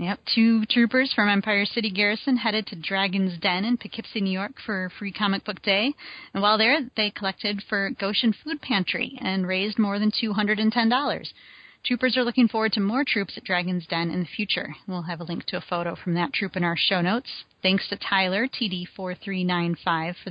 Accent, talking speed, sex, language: American, 195 wpm, female, English